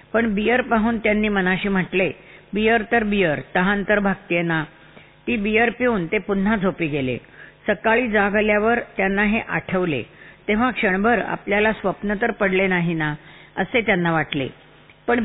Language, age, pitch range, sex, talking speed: Marathi, 50-69, 175-215 Hz, female, 150 wpm